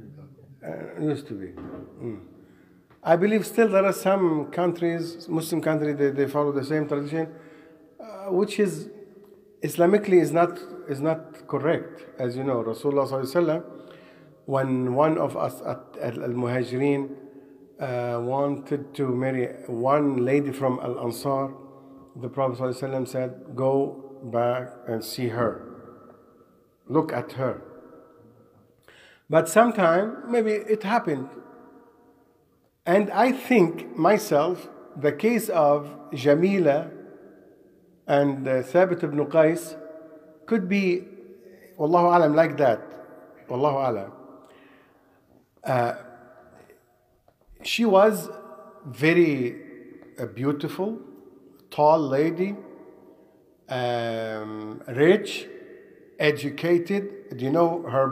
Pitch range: 135-180 Hz